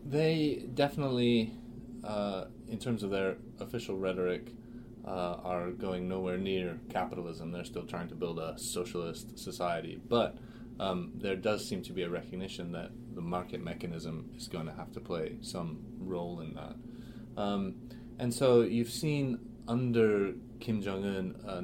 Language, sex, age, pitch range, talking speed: English, male, 30-49, 90-120 Hz, 155 wpm